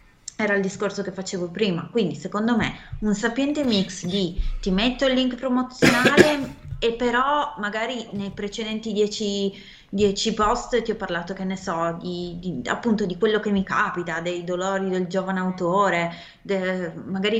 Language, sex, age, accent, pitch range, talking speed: Italian, female, 30-49, native, 180-225 Hz, 160 wpm